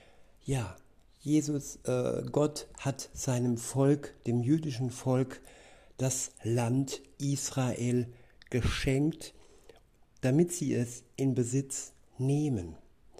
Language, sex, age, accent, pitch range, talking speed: German, male, 60-79, German, 120-140 Hz, 90 wpm